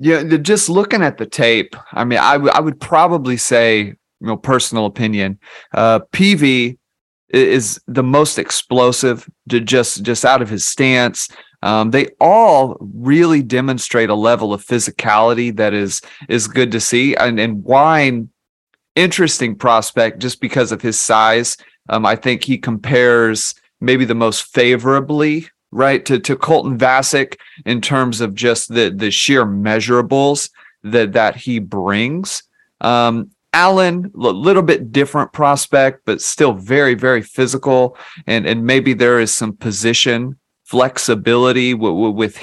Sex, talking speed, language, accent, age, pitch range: male, 150 wpm, English, American, 30-49, 115-135 Hz